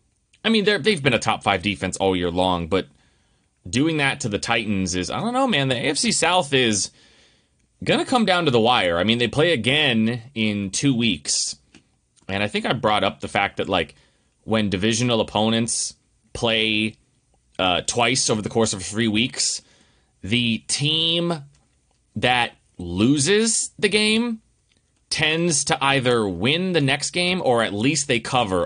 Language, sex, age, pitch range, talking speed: English, male, 30-49, 95-140 Hz, 170 wpm